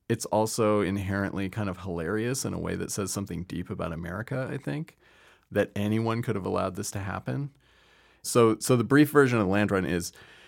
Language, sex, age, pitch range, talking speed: English, male, 30-49, 95-115 Hz, 200 wpm